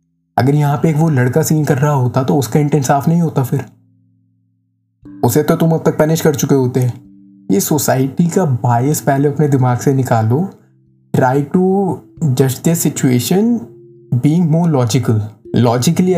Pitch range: 120-150 Hz